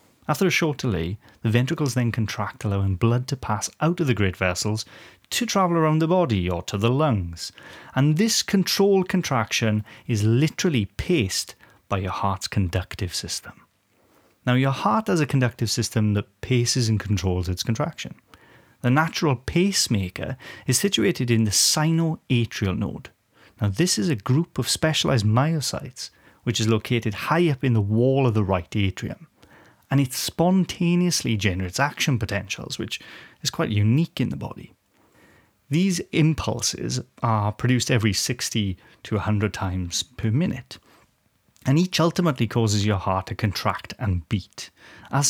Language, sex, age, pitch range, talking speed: English, male, 30-49, 105-150 Hz, 150 wpm